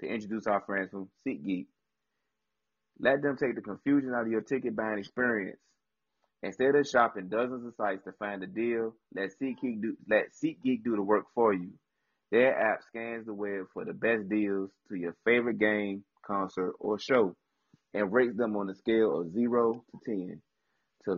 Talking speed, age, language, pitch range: 180 wpm, 30-49, English, 100-125 Hz